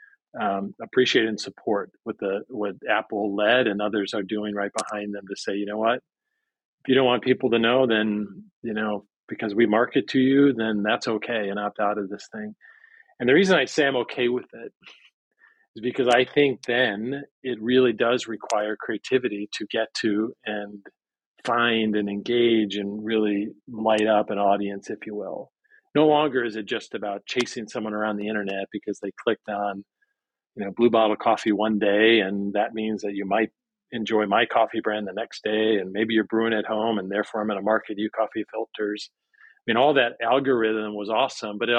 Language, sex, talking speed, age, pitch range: English, male, 200 wpm, 40-59, 105-125 Hz